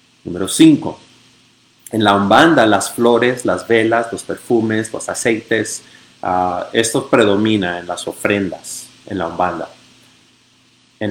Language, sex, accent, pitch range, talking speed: English, male, Mexican, 95-115 Hz, 125 wpm